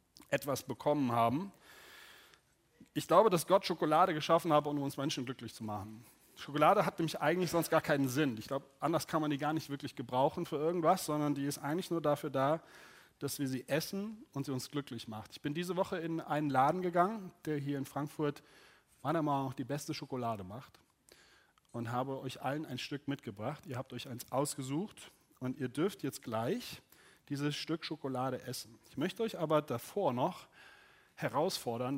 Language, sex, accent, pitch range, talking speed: German, male, German, 130-160 Hz, 185 wpm